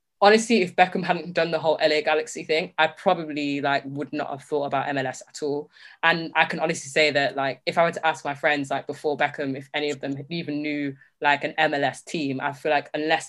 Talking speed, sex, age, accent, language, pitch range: 235 wpm, female, 10-29, British, English, 145-220 Hz